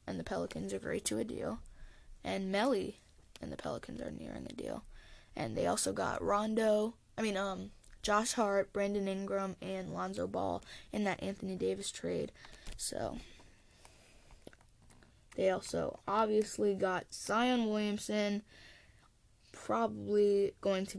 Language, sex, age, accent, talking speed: English, female, 10-29, American, 135 wpm